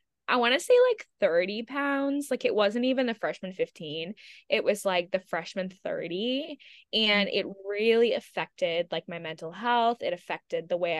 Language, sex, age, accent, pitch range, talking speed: English, female, 20-39, American, 195-255 Hz, 175 wpm